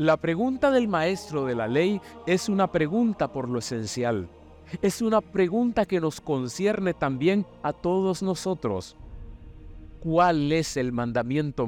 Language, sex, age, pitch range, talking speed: Spanish, male, 50-69, 135-200 Hz, 140 wpm